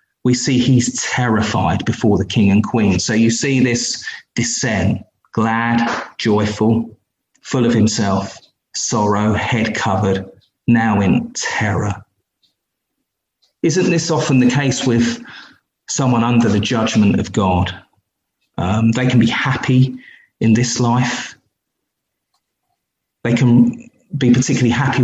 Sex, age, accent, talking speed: male, 30-49, British, 120 wpm